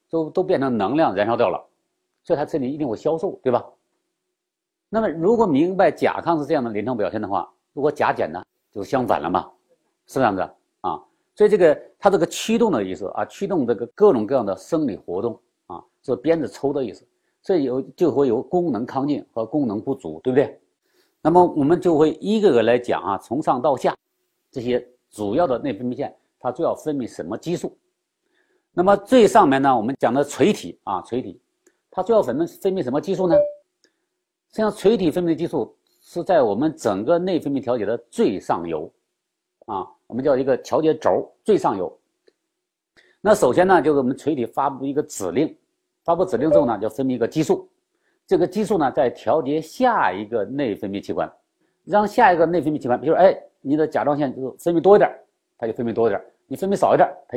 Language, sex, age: Chinese, male, 50-69